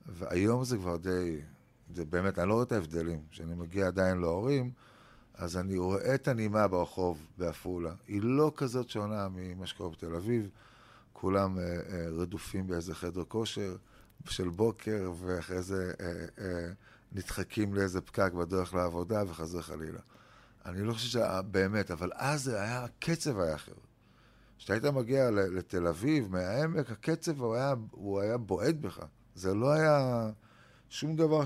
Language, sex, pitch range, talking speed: Hebrew, male, 90-120 Hz, 145 wpm